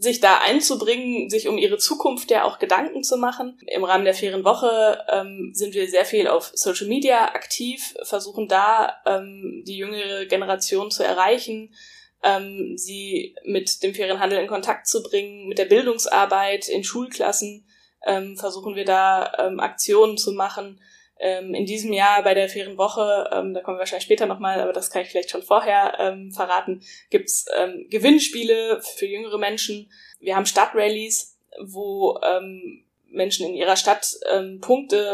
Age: 10-29